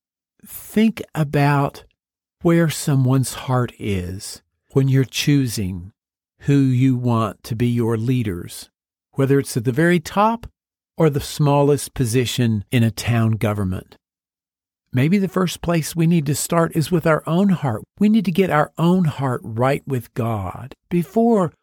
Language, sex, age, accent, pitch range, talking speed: English, male, 50-69, American, 125-175 Hz, 150 wpm